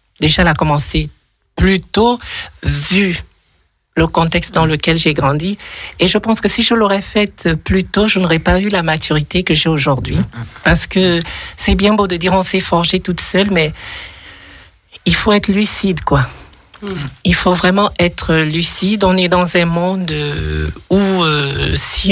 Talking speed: 170 wpm